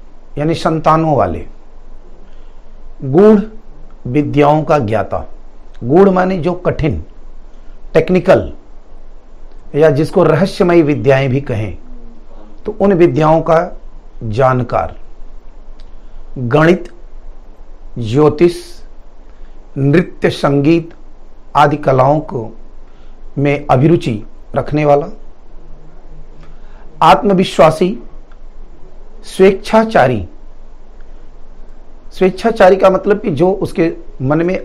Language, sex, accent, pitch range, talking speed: Hindi, male, native, 115-180 Hz, 75 wpm